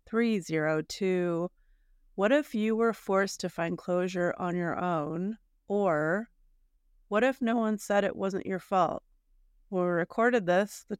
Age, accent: 30-49, American